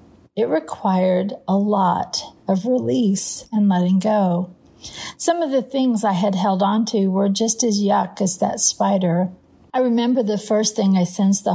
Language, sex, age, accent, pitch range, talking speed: English, female, 50-69, American, 195-245 Hz, 170 wpm